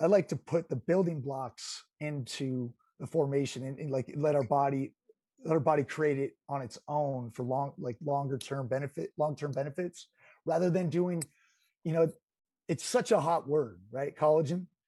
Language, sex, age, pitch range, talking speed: English, male, 30-49, 130-170 Hz, 180 wpm